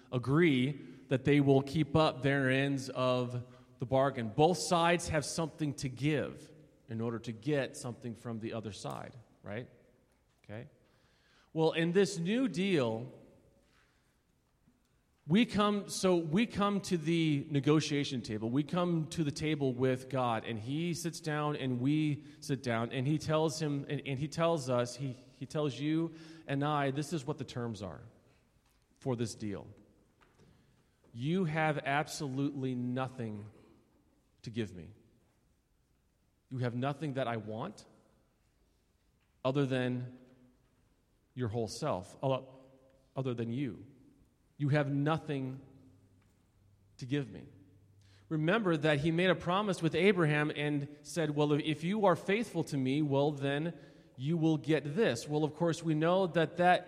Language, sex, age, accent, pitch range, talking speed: English, male, 30-49, American, 125-160 Hz, 145 wpm